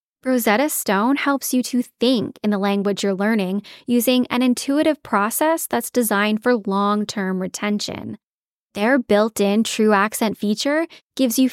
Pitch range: 205-255 Hz